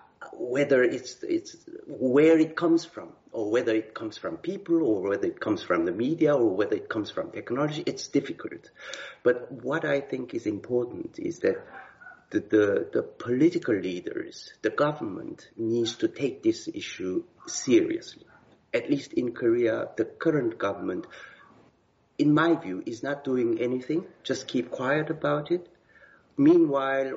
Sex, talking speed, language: male, 150 wpm, English